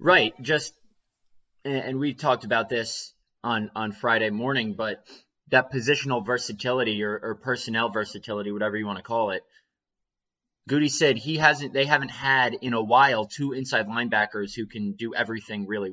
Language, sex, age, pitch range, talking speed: English, male, 20-39, 105-125 Hz, 160 wpm